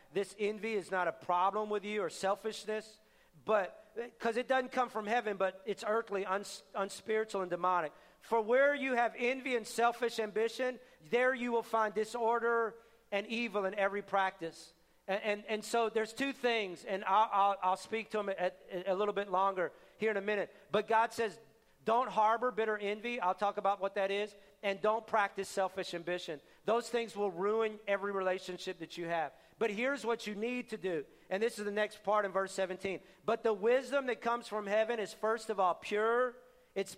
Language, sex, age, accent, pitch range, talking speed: English, male, 40-59, American, 195-235 Hz, 200 wpm